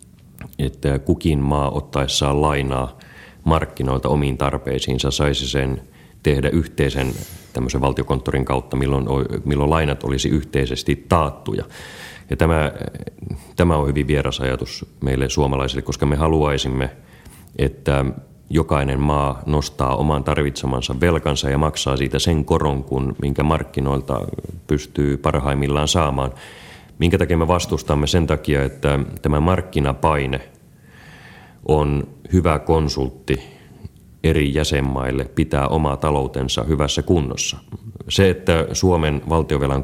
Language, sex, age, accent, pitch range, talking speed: Finnish, male, 30-49, native, 70-80 Hz, 110 wpm